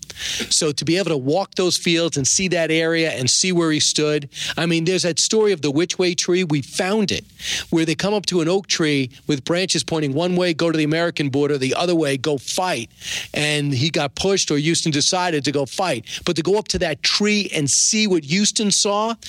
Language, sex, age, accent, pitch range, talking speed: English, male, 40-59, American, 145-180 Hz, 235 wpm